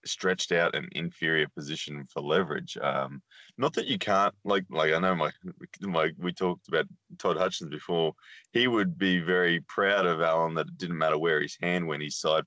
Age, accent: 20-39, Australian